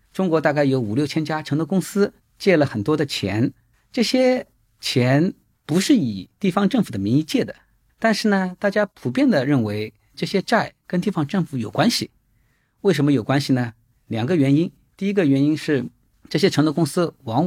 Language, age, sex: Chinese, 50-69, male